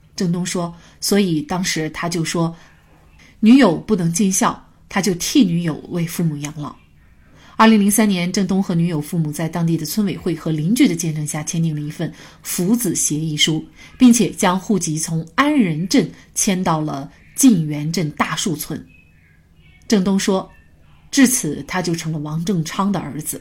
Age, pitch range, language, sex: 30-49, 155-205 Hz, Chinese, female